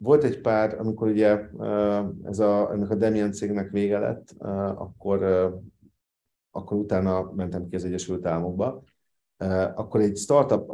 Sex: male